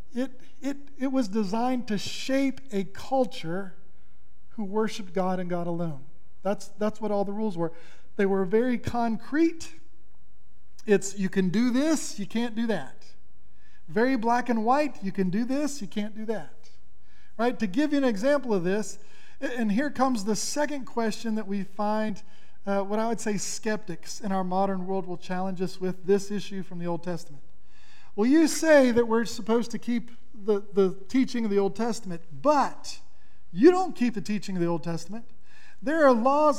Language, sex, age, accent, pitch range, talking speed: English, male, 40-59, American, 190-245 Hz, 185 wpm